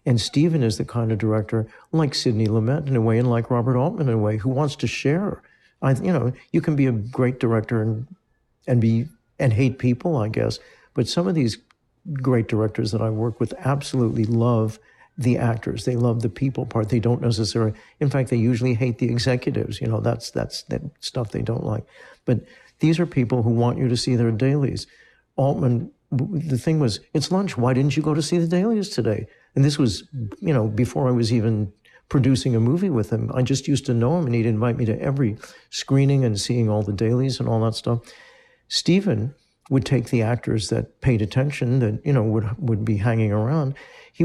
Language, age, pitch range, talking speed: English, 60-79, 115-140 Hz, 215 wpm